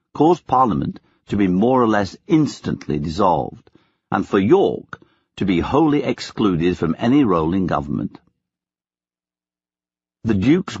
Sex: male